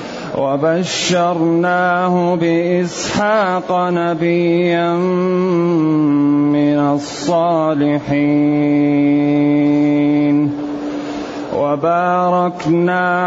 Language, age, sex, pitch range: Arabic, 30-49, male, 145-180 Hz